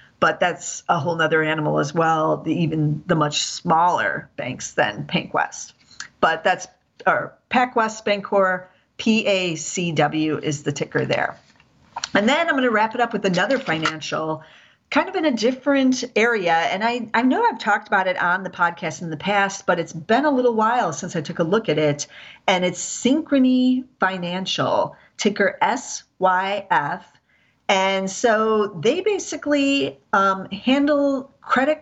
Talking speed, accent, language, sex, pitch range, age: 155 wpm, American, English, female, 160-220 Hz, 40-59